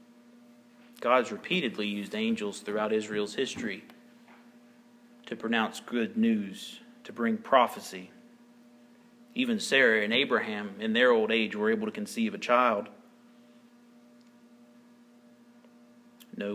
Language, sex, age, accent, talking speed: English, male, 40-59, American, 105 wpm